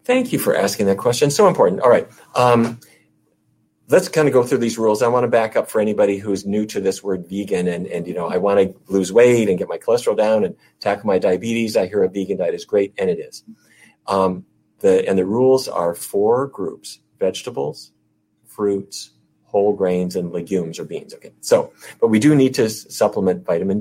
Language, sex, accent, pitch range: English, male, American, 95-130 Hz